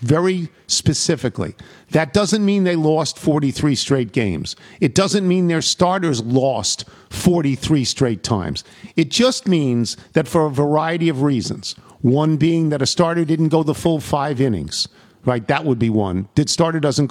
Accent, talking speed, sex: American, 165 wpm, male